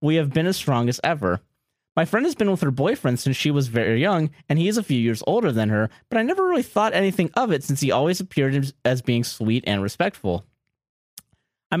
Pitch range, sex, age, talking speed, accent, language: 120-175 Hz, male, 30-49, 235 wpm, American, English